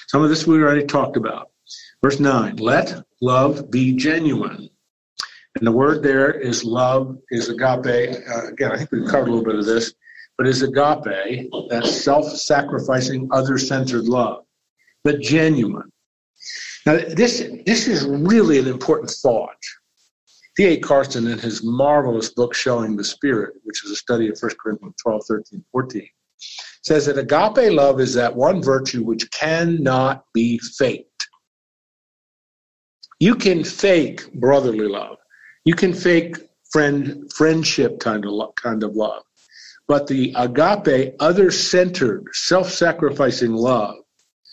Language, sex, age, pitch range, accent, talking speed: English, male, 50-69, 120-155 Hz, American, 130 wpm